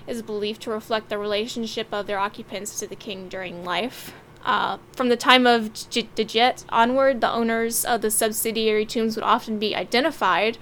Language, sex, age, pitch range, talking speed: English, female, 10-29, 210-235 Hz, 175 wpm